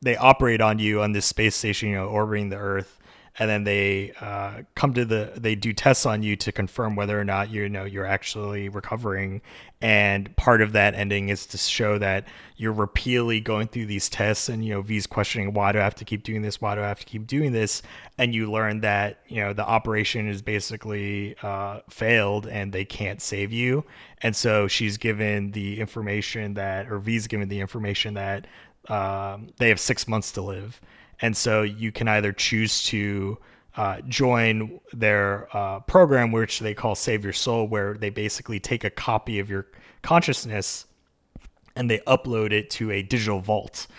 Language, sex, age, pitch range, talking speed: English, male, 20-39, 100-110 Hz, 195 wpm